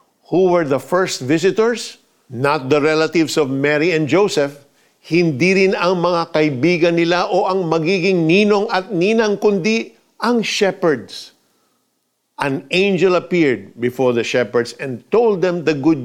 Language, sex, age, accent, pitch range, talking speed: Filipino, male, 50-69, native, 130-185 Hz, 140 wpm